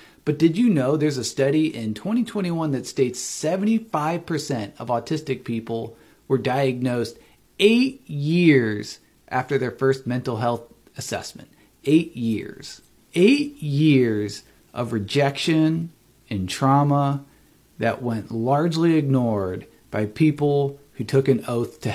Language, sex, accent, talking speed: English, male, American, 120 wpm